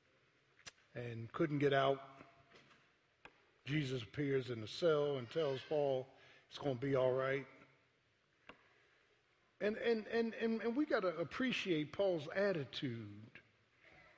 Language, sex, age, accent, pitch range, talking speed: English, male, 50-69, American, 125-170 Hz, 110 wpm